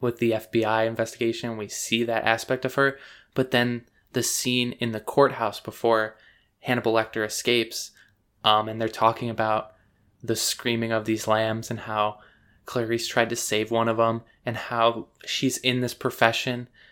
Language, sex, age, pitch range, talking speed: English, male, 20-39, 110-125 Hz, 165 wpm